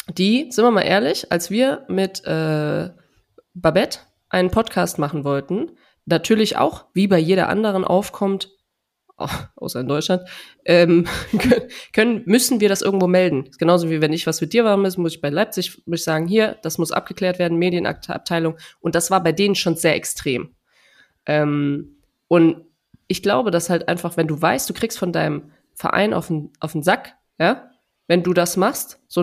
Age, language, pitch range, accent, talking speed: 20-39, German, 165-210 Hz, German, 180 wpm